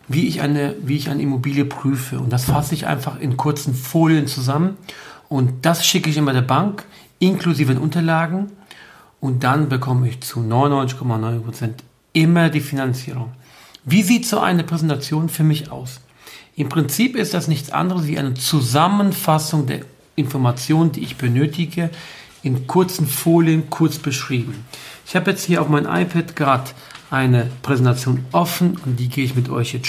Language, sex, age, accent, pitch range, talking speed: German, male, 50-69, German, 130-160 Hz, 165 wpm